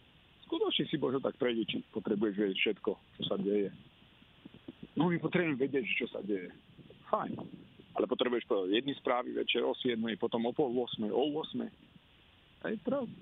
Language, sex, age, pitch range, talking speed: Slovak, male, 50-69, 120-160 Hz, 145 wpm